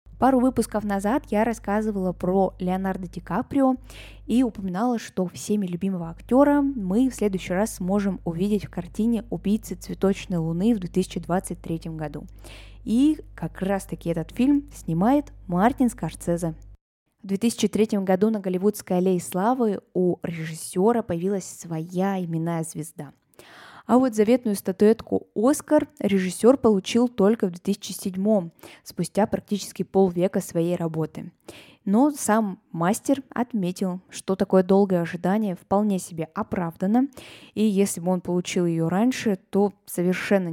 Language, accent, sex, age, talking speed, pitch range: Russian, native, female, 20-39, 125 wpm, 175-215 Hz